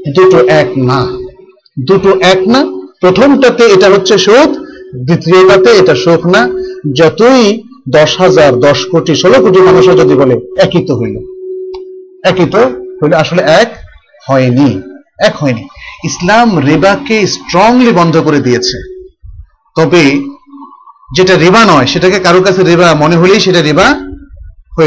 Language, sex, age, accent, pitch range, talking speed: Bengali, male, 50-69, native, 150-215 Hz, 65 wpm